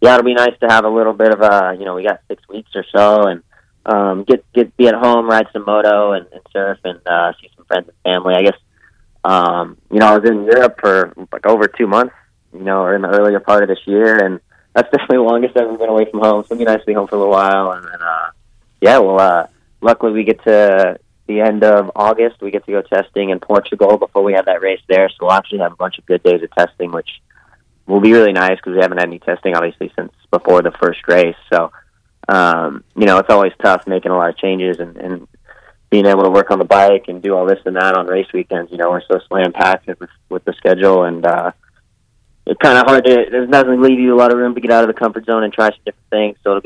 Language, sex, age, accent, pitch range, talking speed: English, male, 20-39, American, 95-115 Hz, 270 wpm